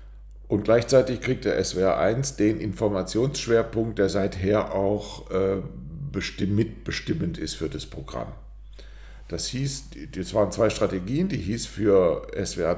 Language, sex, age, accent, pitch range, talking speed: German, male, 60-79, German, 85-115 Hz, 120 wpm